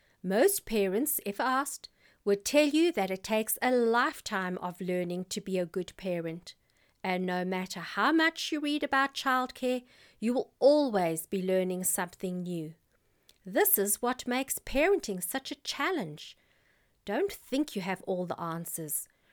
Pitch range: 190-275 Hz